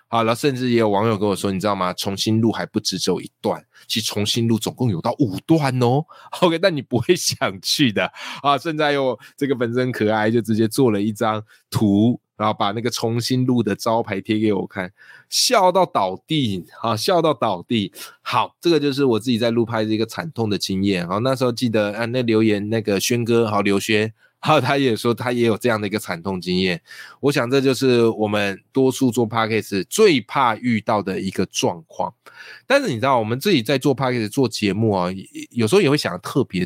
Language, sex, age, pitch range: Chinese, male, 20-39, 105-130 Hz